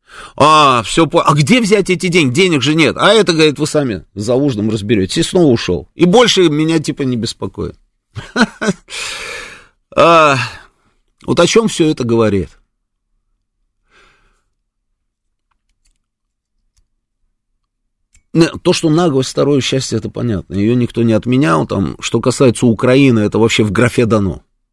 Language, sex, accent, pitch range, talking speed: Russian, male, native, 105-150 Hz, 125 wpm